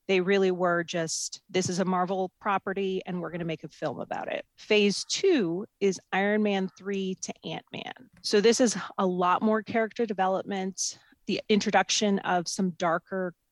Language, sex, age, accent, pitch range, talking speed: English, female, 30-49, American, 175-200 Hz, 175 wpm